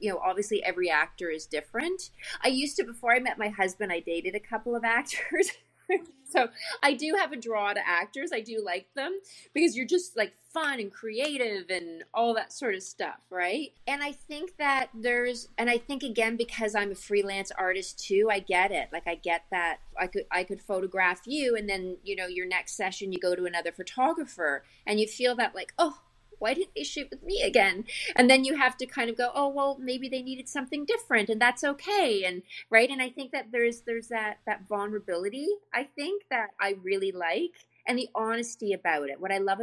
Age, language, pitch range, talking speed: 30-49, English, 185-270 Hz, 215 wpm